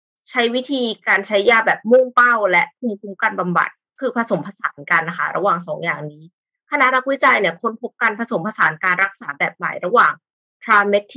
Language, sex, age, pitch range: Thai, female, 20-39, 180-235 Hz